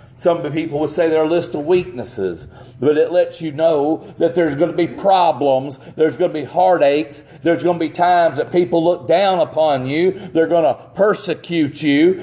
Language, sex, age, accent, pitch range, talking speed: English, male, 40-59, American, 130-170 Hz, 205 wpm